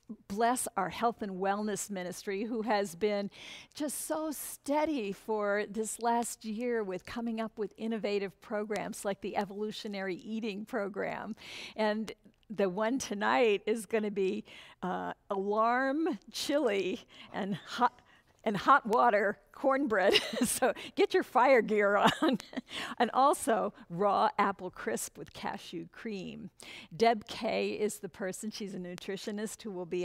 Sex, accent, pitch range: female, American, 195-230 Hz